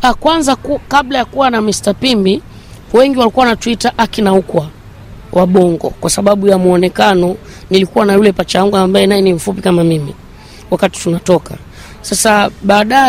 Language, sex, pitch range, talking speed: Swahili, female, 185-230 Hz, 170 wpm